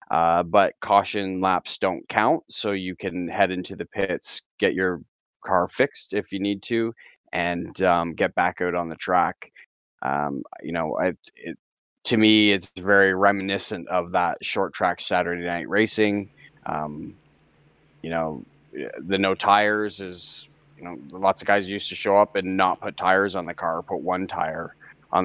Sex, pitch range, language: male, 90-105 Hz, English